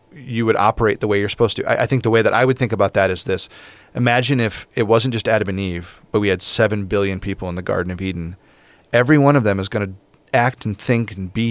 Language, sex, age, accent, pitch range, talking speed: English, male, 30-49, American, 95-115 Hz, 270 wpm